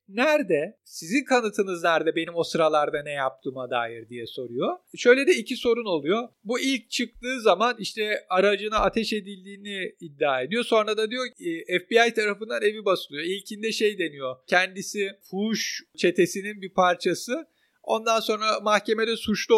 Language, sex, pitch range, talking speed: Turkish, male, 180-225 Hz, 145 wpm